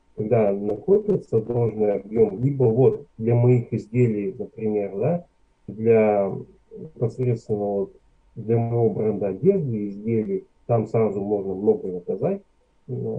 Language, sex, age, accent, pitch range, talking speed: Russian, male, 30-49, native, 110-140 Hz, 110 wpm